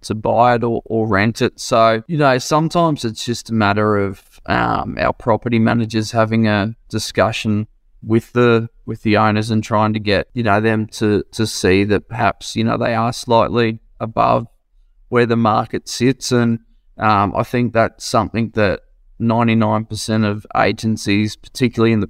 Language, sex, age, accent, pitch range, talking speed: English, male, 20-39, Australian, 105-115 Hz, 175 wpm